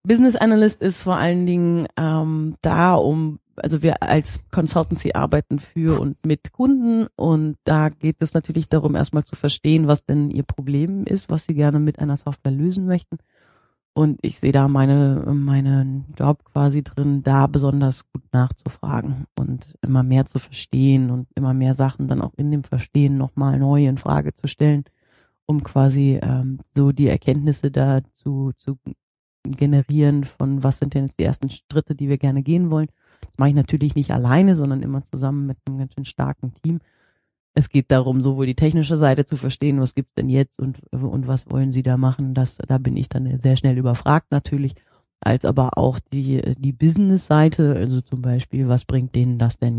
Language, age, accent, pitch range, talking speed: German, 30-49, German, 130-150 Hz, 185 wpm